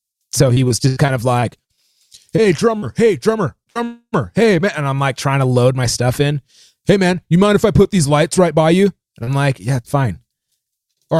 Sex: male